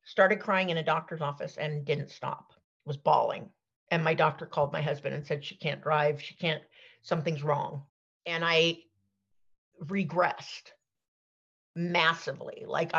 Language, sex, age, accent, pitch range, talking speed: English, female, 50-69, American, 155-195 Hz, 145 wpm